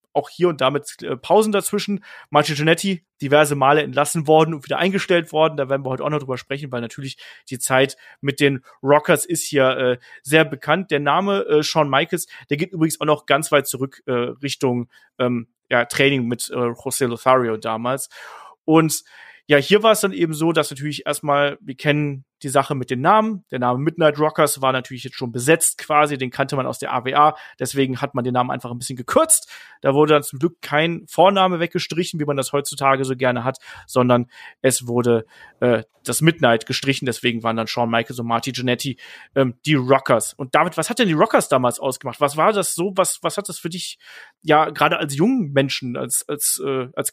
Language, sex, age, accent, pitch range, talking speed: German, male, 30-49, German, 130-160 Hz, 210 wpm